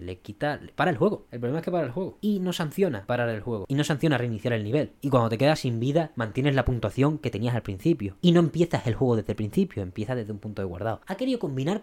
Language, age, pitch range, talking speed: Spanish, 10-29, 110-160 Hz, 280 wpm